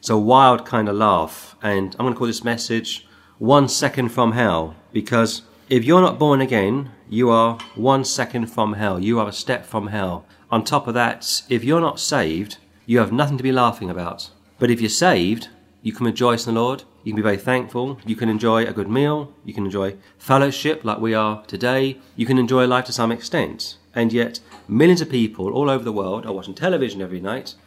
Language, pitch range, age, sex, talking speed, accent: English, 100-125 Hz, 40-59, male, 215 wpm, British